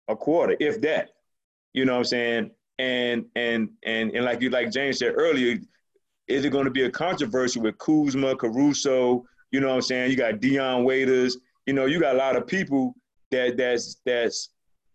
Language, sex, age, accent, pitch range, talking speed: English, male, 30-49, American, 125-165 Hz, 190 wpm